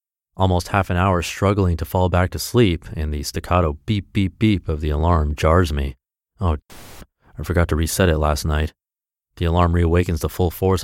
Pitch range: 80-105 Hz